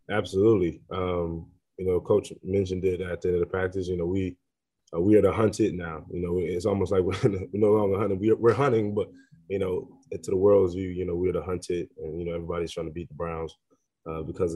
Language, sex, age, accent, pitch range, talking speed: English, male, 20-39, American, 85-100 Hz, 255 wpm